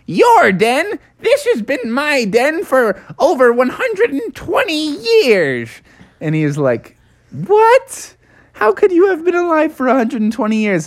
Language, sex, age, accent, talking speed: English, male, 20-39, American, 135 wpm